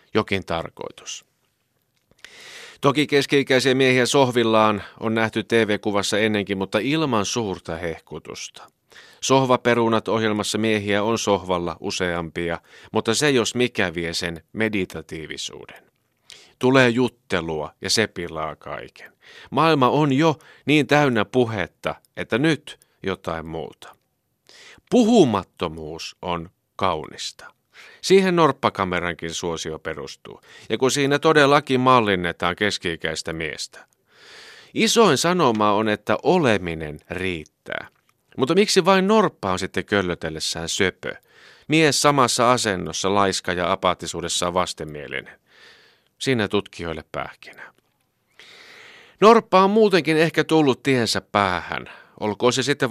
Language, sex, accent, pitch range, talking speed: Finnish, male, native, 90-135 Hz, 105 wpm